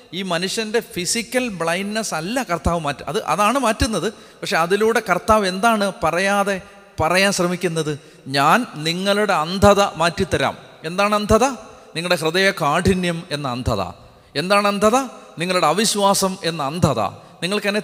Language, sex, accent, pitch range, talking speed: Malayalam, male, native, 160-205 Hz, 120 wpm